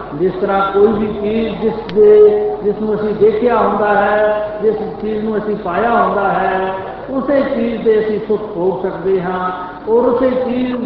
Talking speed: 165 wpm